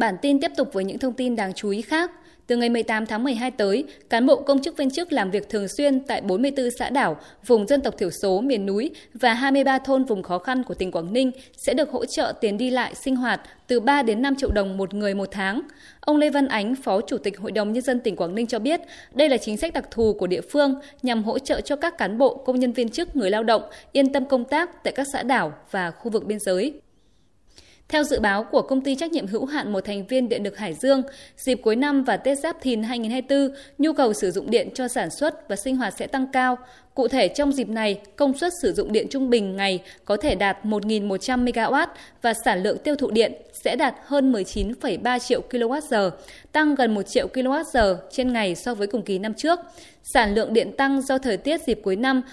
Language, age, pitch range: Vietnamese, 20-39, 215-275 Hz